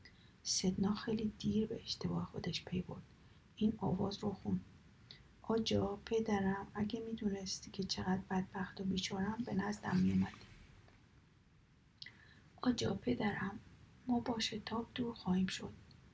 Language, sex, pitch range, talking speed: Persian, female, 195-220 Hz, 125 wpm